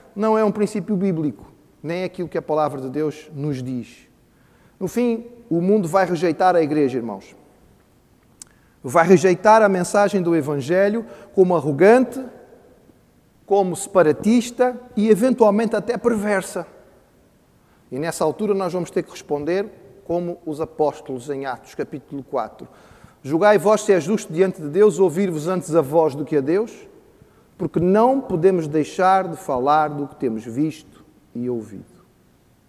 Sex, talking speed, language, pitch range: male, 150 wpm, Portuguese, 155-210 Hz